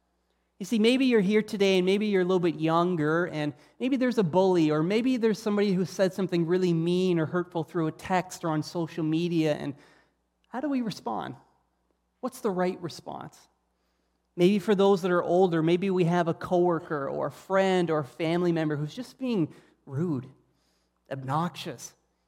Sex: male